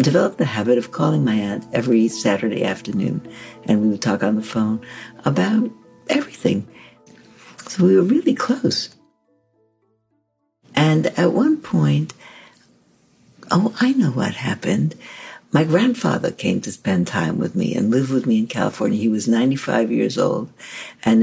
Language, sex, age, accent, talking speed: English, female, 60-79, American, 155 wpm